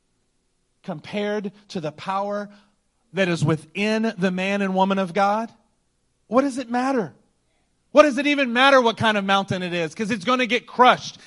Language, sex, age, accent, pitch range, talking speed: English, male, 30-49, American, 180-245 Hz, 180 wpm